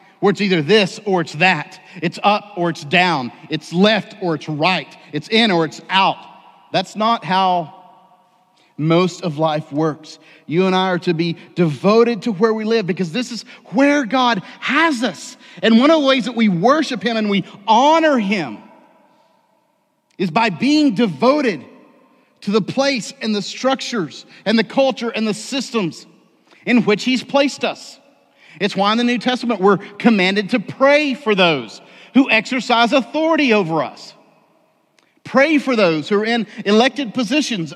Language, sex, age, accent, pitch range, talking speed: English, male, 40-59, American, 185-245 Hz, 170 wpm